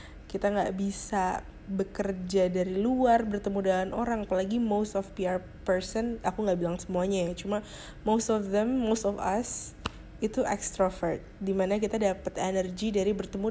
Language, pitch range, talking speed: Indonesian, 185-215 Hz, 155 wpm